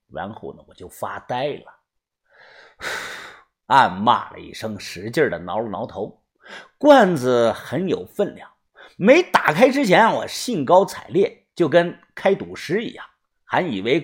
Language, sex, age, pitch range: Chinese, male, 50-69, 170-260 Hz